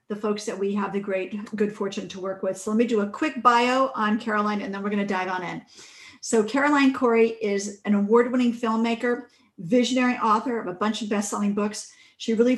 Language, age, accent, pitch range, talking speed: English, 40-59, American, 205-255 Hz, 215 wpm